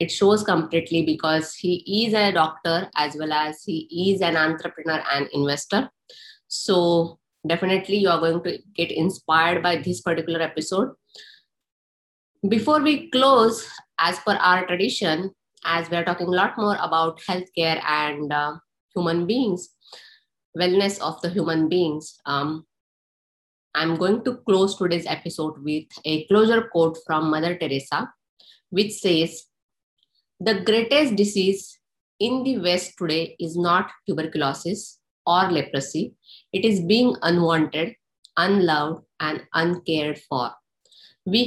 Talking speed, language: 130 wpm, English